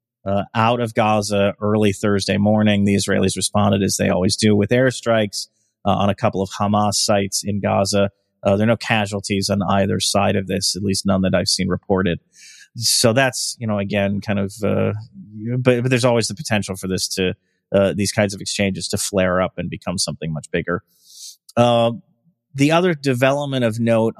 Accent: American